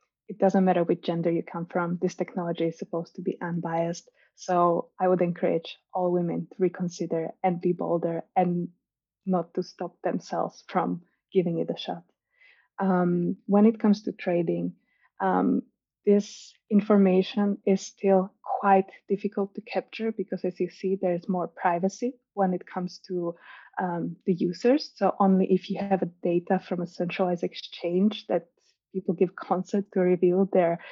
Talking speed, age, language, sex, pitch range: 165 wpm, 20-39, Danish, female, 175-200 Hz